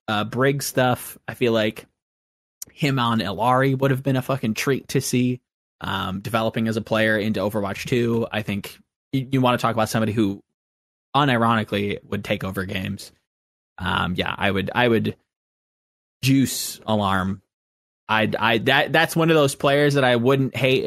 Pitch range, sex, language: 105-155 Hz, male, English